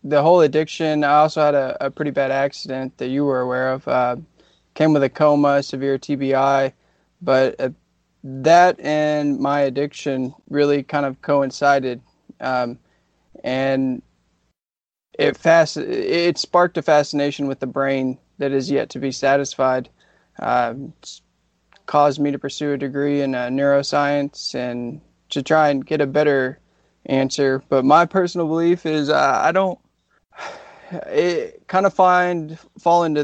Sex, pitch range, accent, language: male, 135-150 Hz, American, English